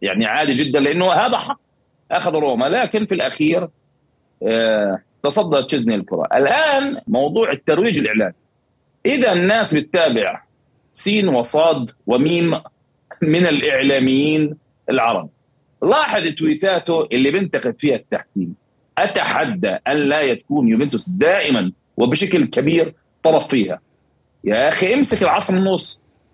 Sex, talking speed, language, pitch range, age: male, 110 wpm, Arabic, 155-225 Hz, 40-59